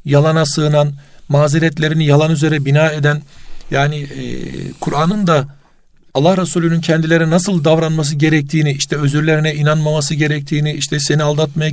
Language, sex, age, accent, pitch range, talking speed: Turkish, male, 50-69, native, 145-170 Hz, 125 wpm